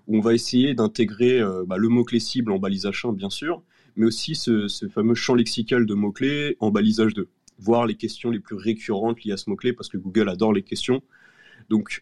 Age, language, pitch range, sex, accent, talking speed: 30-49, French, 100-125 Hz, male, French, 225 wpm